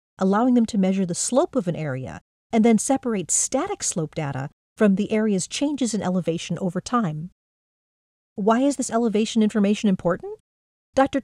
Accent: American